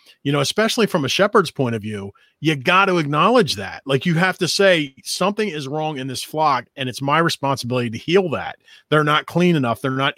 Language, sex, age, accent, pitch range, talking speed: English, male, 30-49, American, 140-195 Hz, 225 wpm